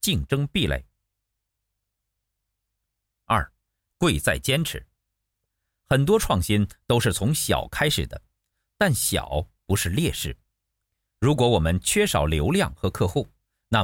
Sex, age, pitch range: male, 50-69, 95-130 Hz